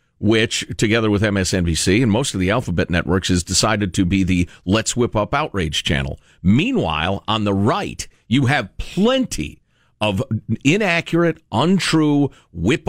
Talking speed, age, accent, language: 145 wpm, 50-69, American, English